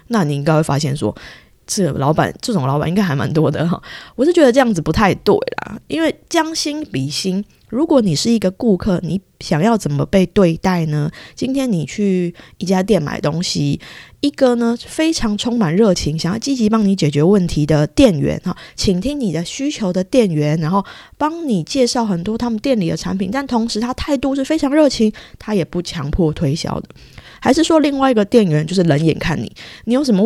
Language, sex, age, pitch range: Chinese, female, 20-39, 160-240 Hz